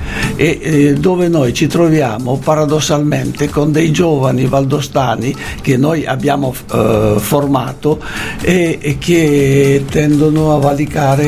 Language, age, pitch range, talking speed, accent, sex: Italian, 60-79, 135-160 Hz, 115 wpm, native, male